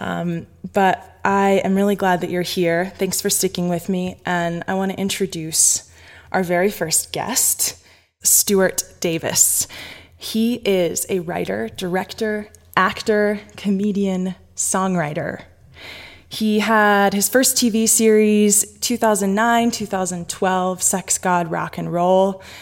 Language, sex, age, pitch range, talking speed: English, female, 20-39, 175-210 Hz, 120 wpm